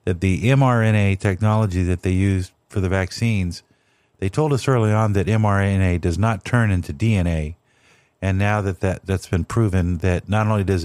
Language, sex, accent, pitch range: English, male, American, 90-115 Hz